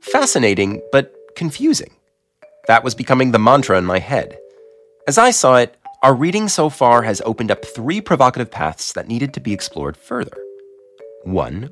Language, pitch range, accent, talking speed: English, 105-165 Hz, American, 165 wpm